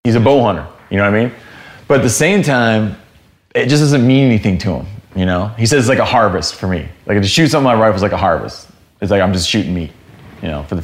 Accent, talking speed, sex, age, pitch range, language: American, 290 wpm, male, 20-39, 100-125 Hz, English